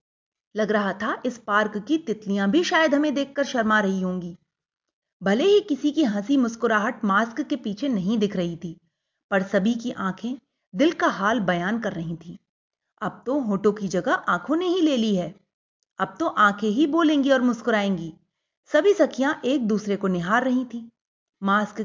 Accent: native